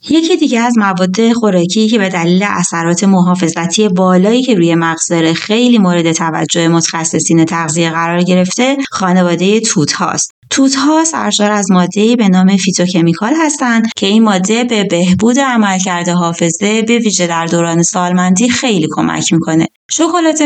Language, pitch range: Persian, 175-230 Hz